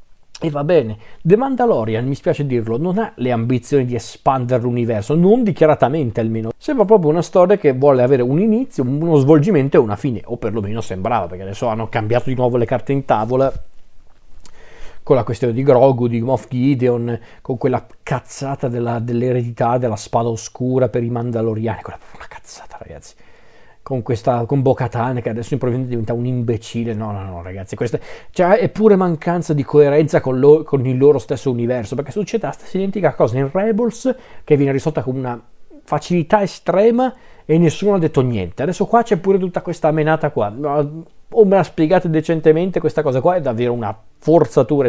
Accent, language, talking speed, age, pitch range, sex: native, Italian, 180 wpm, 40-59, 120-165 Hz, male